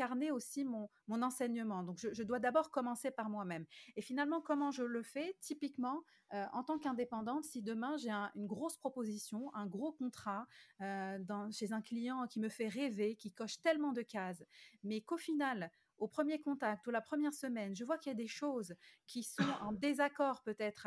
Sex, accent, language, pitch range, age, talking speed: female, French, French, 215-275 Hz, 30-49, 200 wpm